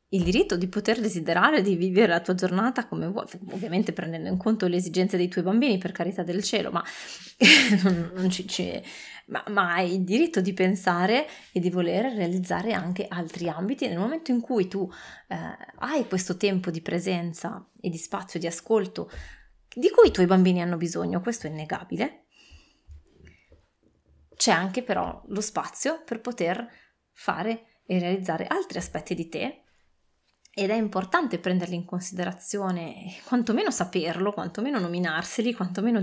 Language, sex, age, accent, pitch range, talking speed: Italian, female, 20-39, native, 175-220 Hz, 150 wpm